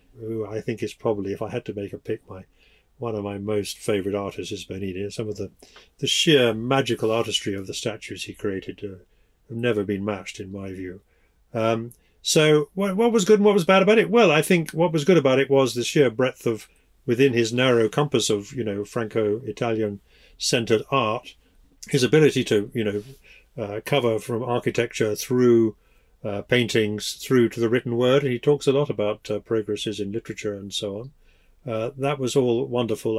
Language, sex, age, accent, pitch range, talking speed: English, male, 50-69, British, 105-130 Hz, 200 wpm